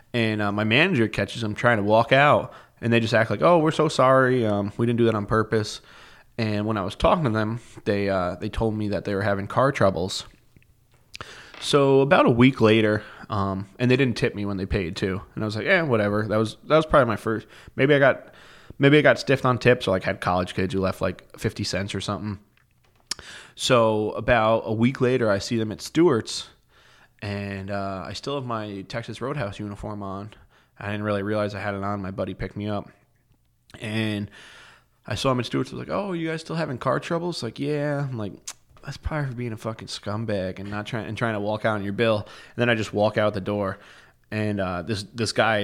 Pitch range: 100-120 Hz